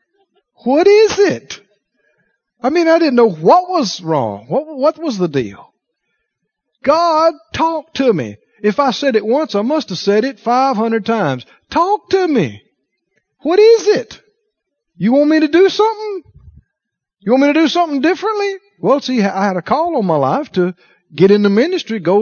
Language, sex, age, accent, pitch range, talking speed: English, male, 50-69, American, 180-290 Hz, 175 wpm